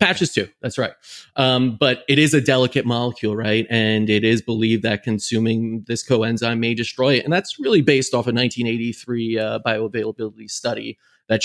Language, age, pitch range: English, 30-49, 115-145 Hz